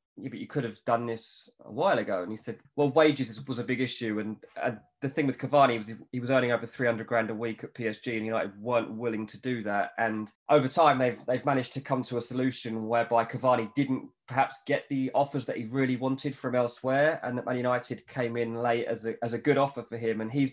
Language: English